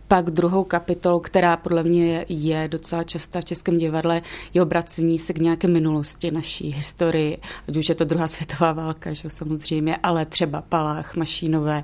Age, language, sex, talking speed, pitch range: 30-49, Czech, female, 165 wpm, 160-175 Hz